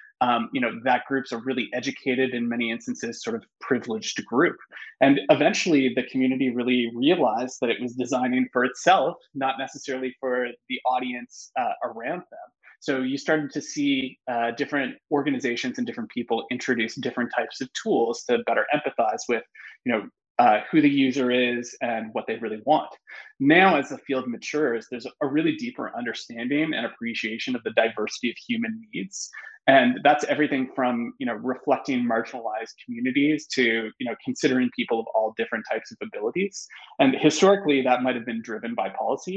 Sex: male